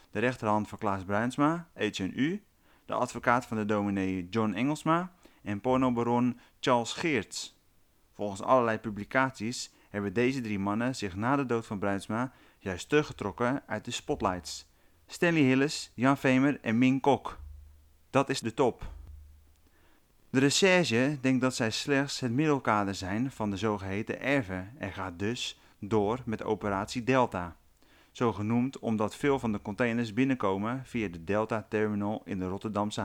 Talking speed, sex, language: 145 wpm, male, Dutch